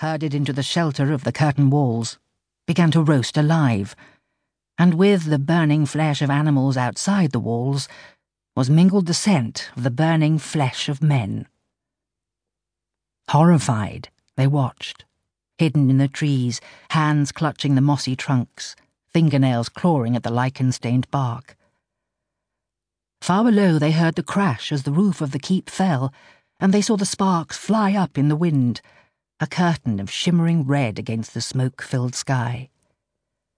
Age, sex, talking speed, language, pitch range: 50-69, female, 145 wpm, English, 130-170 Hz